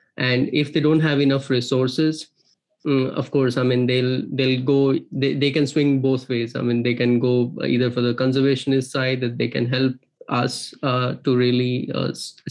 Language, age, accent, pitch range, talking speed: English, 20-39, Indian, 125-140 Hz, 185 wpm